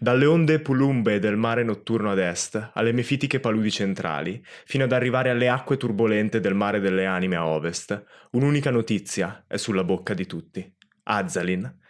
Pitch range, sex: 100-130 Hz, male